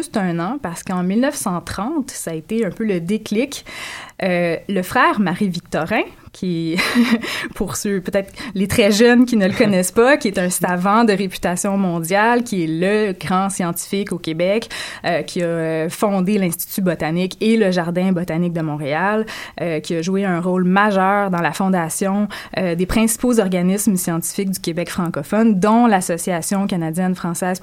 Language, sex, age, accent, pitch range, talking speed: French, female, 20-39, Canadian, 180-235 Hz, 165 wpm